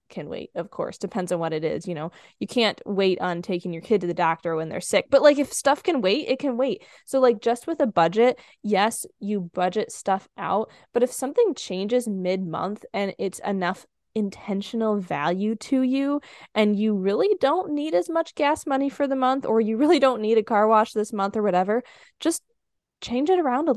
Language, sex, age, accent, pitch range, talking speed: English, female, 10-29, American, 185-255 Hz, 215 wpm